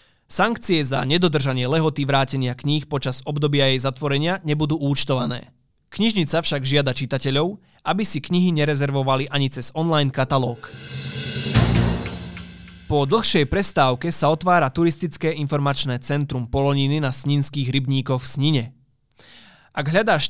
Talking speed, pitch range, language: 120 wpm, 135-175 Hz, Slovak